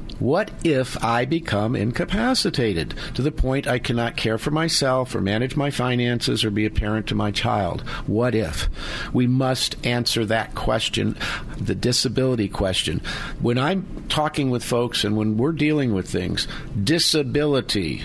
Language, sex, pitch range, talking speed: English, male, 110-140 Hz, 155 wpm